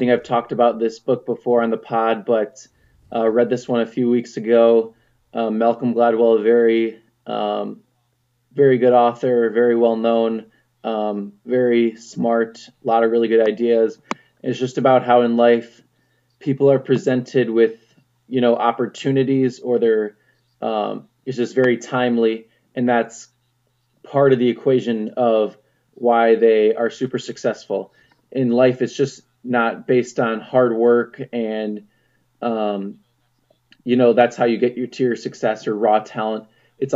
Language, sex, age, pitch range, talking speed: English, male, 20-39, 115-125 Hz, 155 wpm